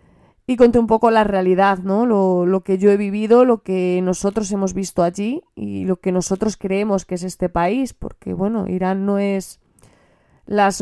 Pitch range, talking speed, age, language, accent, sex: 180-205 Hz, 190 wpm, 20-39, Spanish, Spanish, female